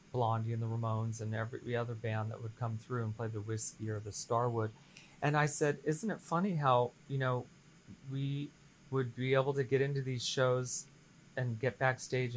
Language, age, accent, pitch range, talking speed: English, 30-49, American, 120-150 Hz, 195 wpm